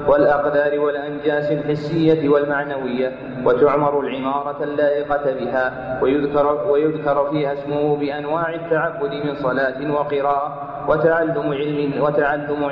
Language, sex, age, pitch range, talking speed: Arabic, male, 30-49, 145-150 Hz, 80 wpm